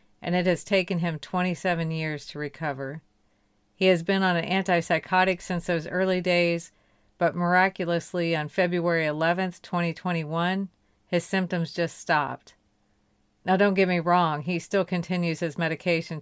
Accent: American